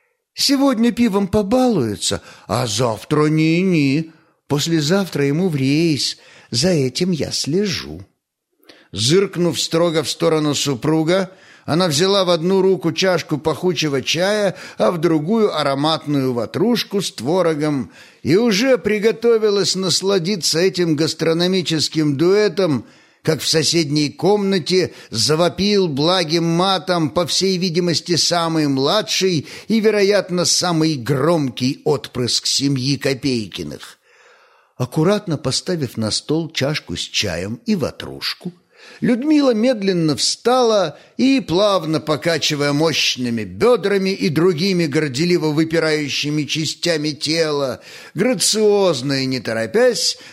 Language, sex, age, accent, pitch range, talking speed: Russian, male, 50-69, native, 145-195 Hz, 105 wpm